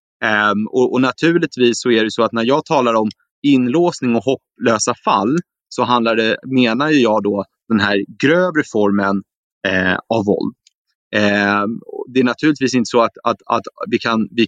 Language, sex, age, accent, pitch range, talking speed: Swedish, male, 30-49, native, 115-150 Hz, 175 wpm